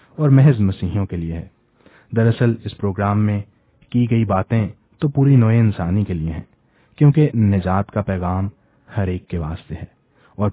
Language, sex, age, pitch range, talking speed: English, male, 30-49, 95-120 Hz, 170 wpm